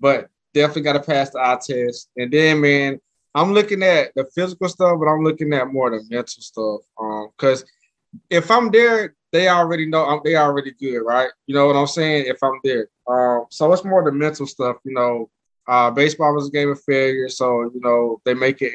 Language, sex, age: English, male, 20-39